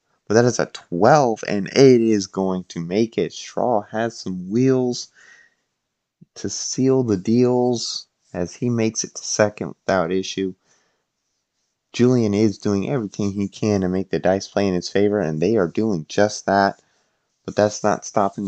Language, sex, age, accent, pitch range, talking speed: English, male, 30-49, American, 95-115 Hz, 170 wpm